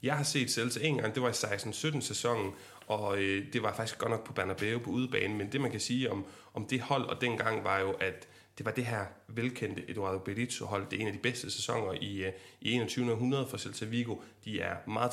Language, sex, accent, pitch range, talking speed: Danish, male, native, 110-135 Hz, 235 wpm